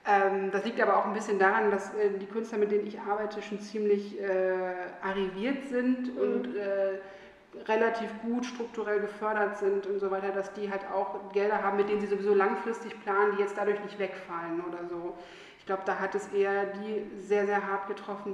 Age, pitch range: 30-49, 190-210 Hz